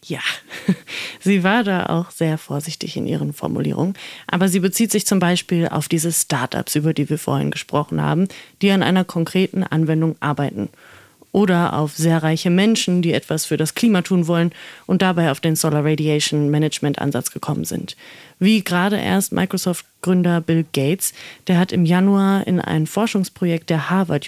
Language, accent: German, German